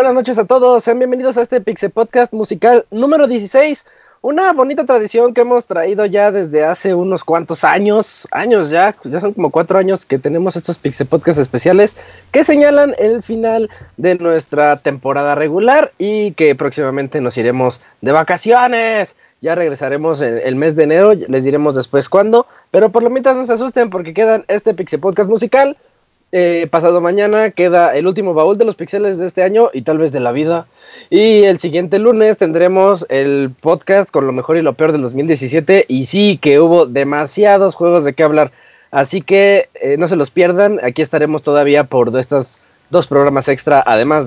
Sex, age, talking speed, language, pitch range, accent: male, 20-39, 185 wpm, Spanish, 150-220 Hz, Mexican